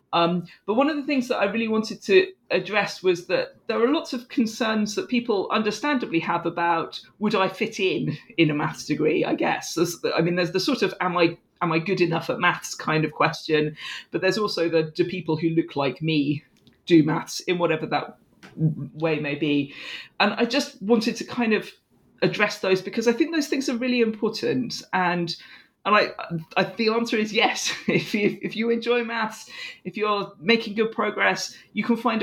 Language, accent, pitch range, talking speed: English, British, 160-220 Hz, 195 wpm